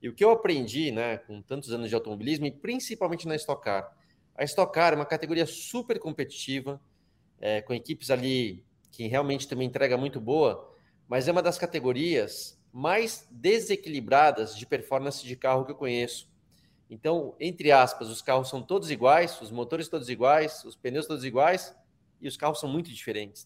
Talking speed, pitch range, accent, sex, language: 180 wpm, 120-155 Hz, Brazilian, male, Portuguese